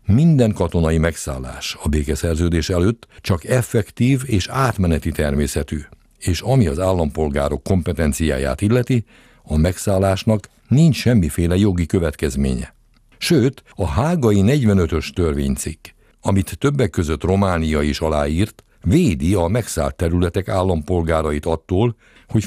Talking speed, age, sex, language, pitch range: 110 wpm, 60-79, male, Hungarian, 80-110 Hz